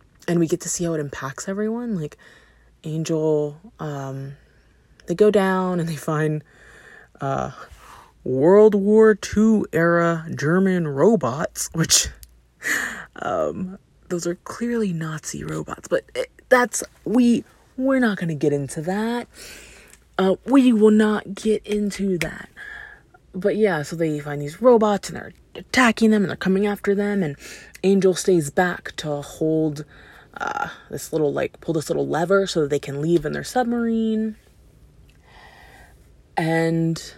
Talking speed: 145 wpm